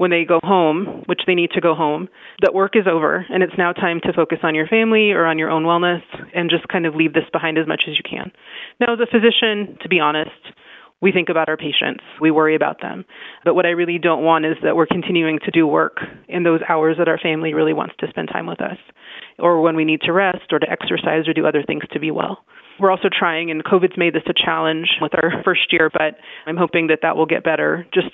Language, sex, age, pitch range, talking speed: English, female, 30-49, 155-180 Hz, 255 wpm